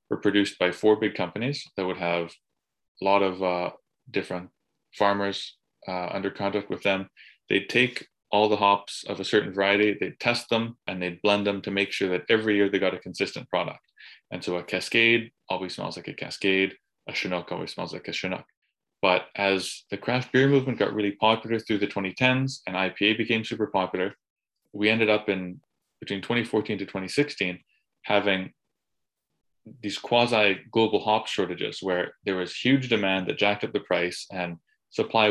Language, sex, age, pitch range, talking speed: English, male, 20-39, 90-110 Hz, 180 wpm